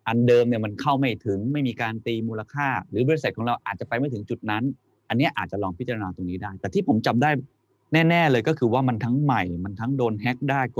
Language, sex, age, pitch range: Thai, male, 20-39, 95-125 Hz